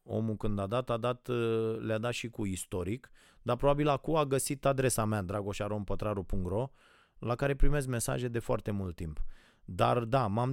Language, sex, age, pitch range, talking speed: Romanian, male, 30-49, 105-130 Hz, 170 wpm